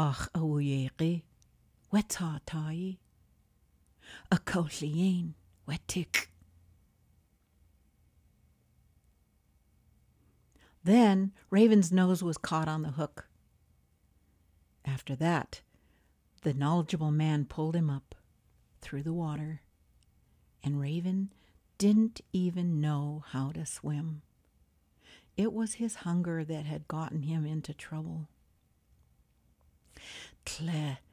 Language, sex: English, female